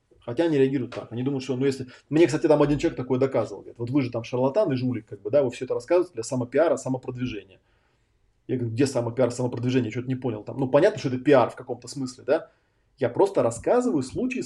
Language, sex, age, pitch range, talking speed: Russian, male, 30-49, 120-155 Hz, 235 wpm